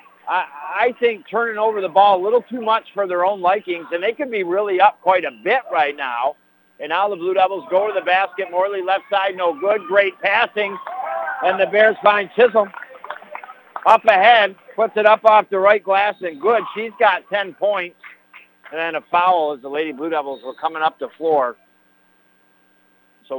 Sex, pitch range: male, 150-205 Hz